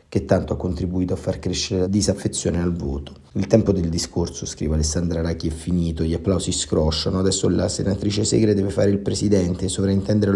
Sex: male